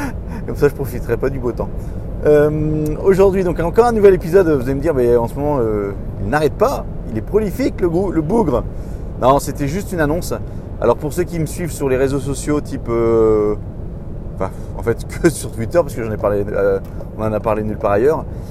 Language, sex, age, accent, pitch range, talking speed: French, male, 30-49, French, 105-145 Hz, 225 wpm